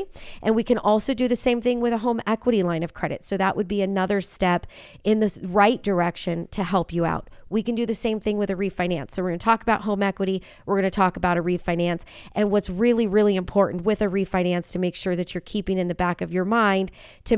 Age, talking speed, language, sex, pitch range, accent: 40-59, 255 wpm, English, female, 185-215 Hz, American